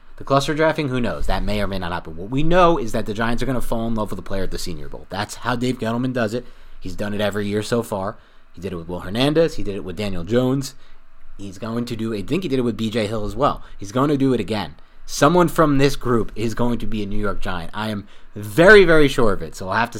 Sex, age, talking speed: male, 30-49, 295 wpm